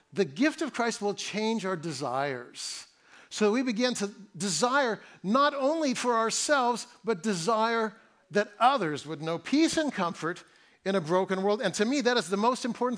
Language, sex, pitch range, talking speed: English, male, 190-255 Hz, 175 wpm